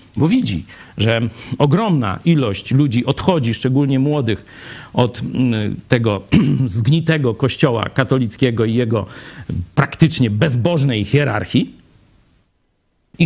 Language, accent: Polish, native